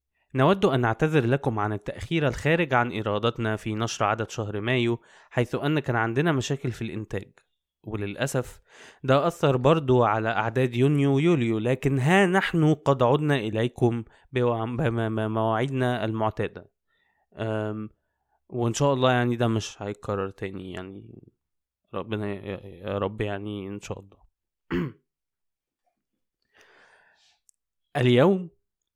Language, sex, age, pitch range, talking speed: Arabic, male, 20-39, 110-140 Hz, 110 wpm